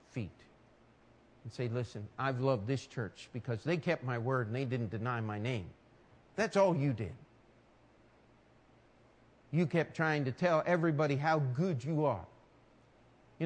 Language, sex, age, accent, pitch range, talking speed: English, male, 50-69, American, 130-195 Hz, 150 wpm